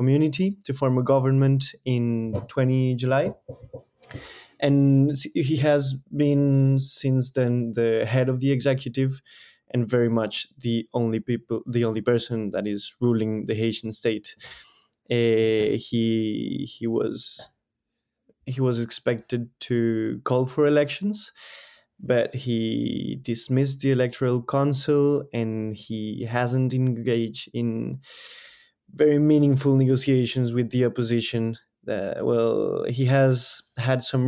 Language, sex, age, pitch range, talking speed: English, male, 20-39, 115-135 Hz, 120 wpm